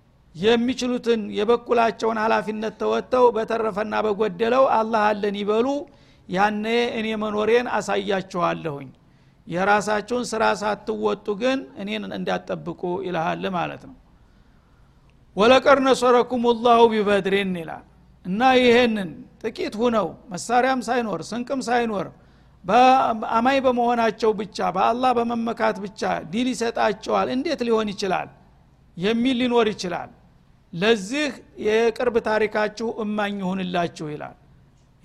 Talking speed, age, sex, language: 85 wpm, 60-79, male, Amharic